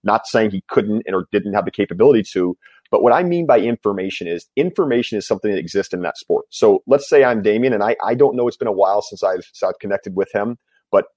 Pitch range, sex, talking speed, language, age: 100-150 Hz, male, 245 wpm, English, 30-49